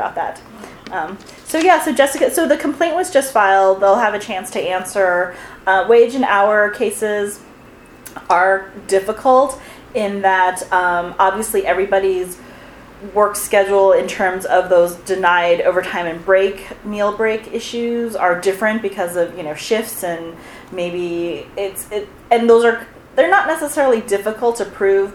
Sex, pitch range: female, 175-220 Hz